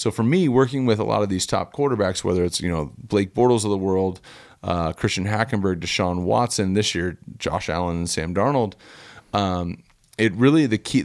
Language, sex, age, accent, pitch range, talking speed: English, male, 30-49, American, 95-120 Hz, 200 wpm